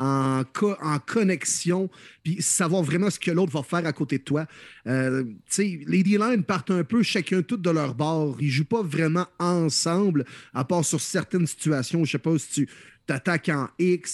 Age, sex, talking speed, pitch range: 30-49, male, 200 wpm, 140-180 Hz